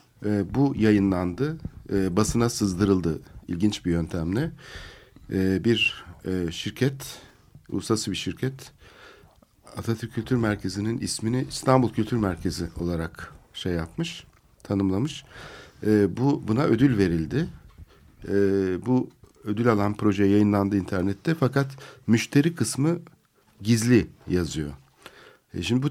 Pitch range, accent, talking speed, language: 95-120 Hz, native, 110 wpm, Turkish